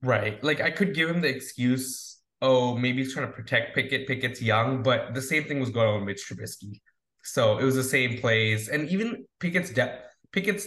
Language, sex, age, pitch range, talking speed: English, male, 20-39, 125-165 Hz, 215 wpm